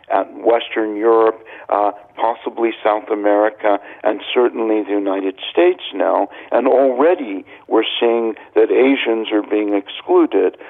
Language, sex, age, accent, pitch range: Korean, male, 60-79, American, 110-160 Hz